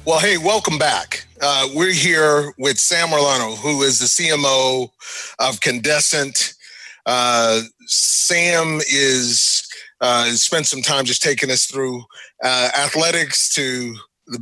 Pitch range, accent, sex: 130-165 Hz, American, male